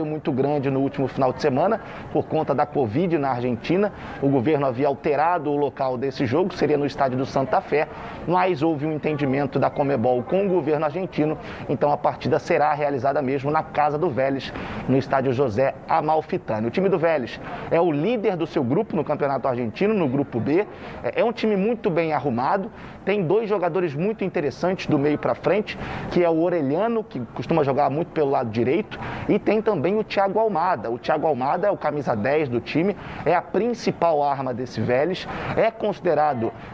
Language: Portuguese